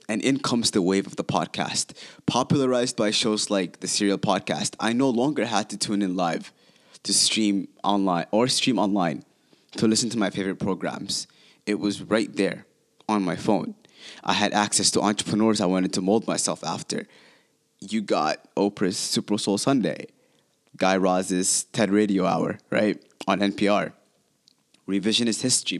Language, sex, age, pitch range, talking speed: English, male, 20-39, 95-110 Hz, 160 wpm